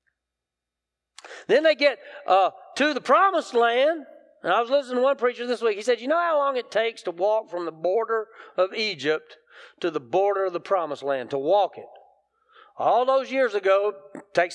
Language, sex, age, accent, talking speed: English, male, 40-59, American, 195 wpm